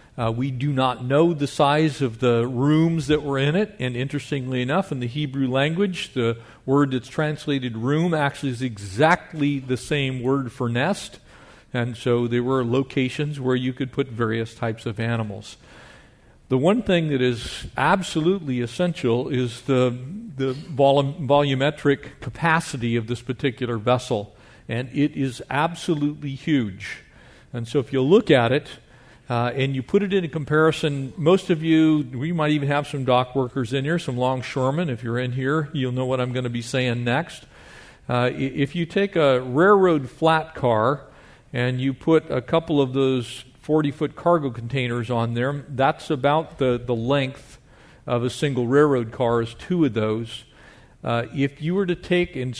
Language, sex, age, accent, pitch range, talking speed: English, male, 50-69, American, 125-155 Hz, 170 wpm